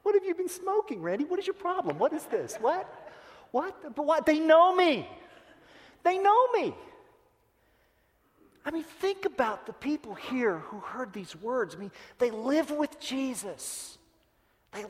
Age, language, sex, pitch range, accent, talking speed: 40-59, English, male, 190-290 Hz, American, 160 wpm